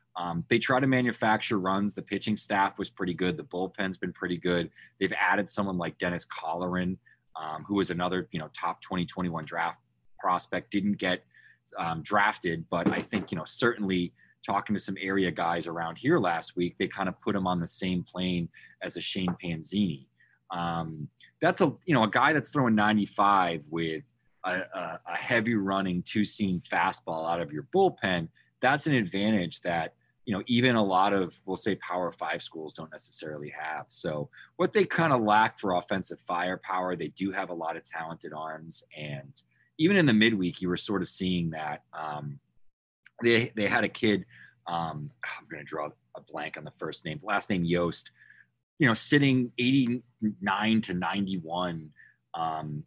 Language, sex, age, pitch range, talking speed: English, male, 30-49, 85-105 Hz, 185 wpm